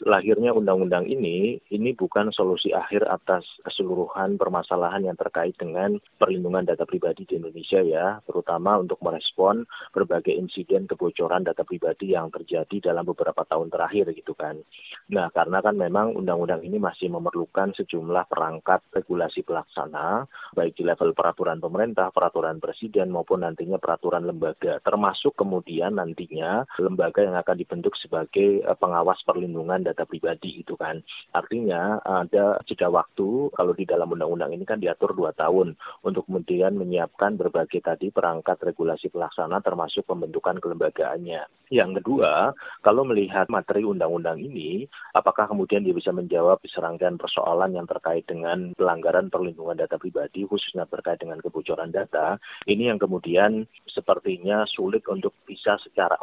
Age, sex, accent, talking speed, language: 30-49, male, native, 140 wpm, Indonesian